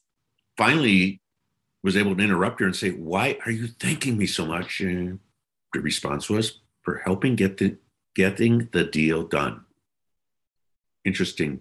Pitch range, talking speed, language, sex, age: 80-115 Hz, 140 wpm, English, male, 60-79